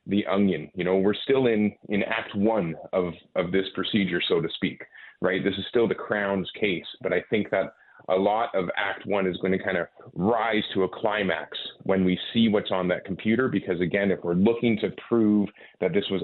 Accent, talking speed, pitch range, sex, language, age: American, 220 wpm, 90-105 Hz, male, English, 30-49